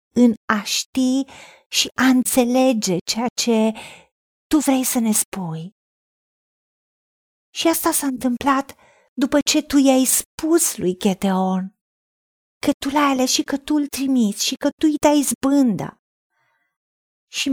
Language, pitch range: Romanian, 225-280 Hz